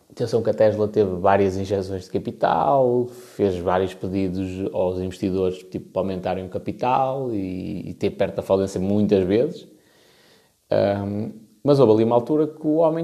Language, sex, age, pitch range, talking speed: Portuguese, male, 20-39, 100-140 Hz, 155 wpm